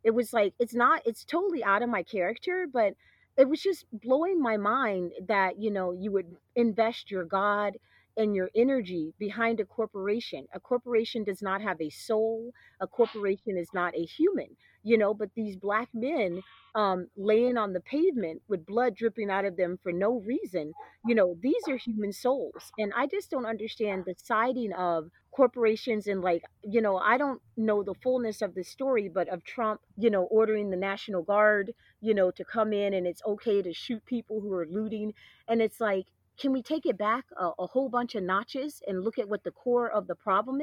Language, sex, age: English, female, 40-59